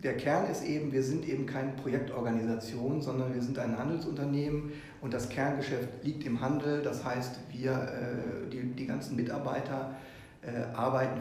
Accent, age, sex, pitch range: German, 40-59, male, 120-140 Hz